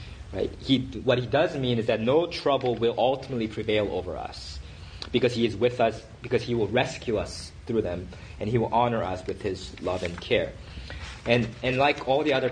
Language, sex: English, male